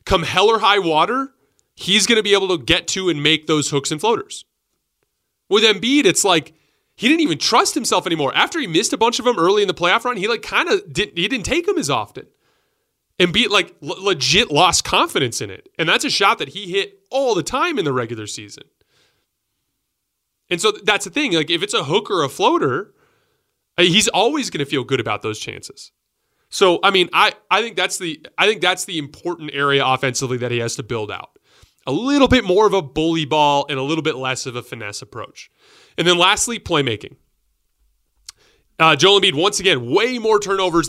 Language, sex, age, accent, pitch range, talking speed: English, male, 30-49, American, 140-225 Hz, 215 wpm